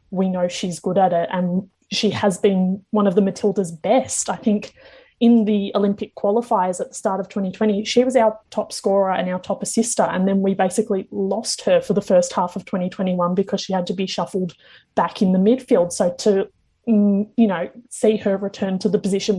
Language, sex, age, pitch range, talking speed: English, female, 20-39, 190-220 Hz, 205 wpm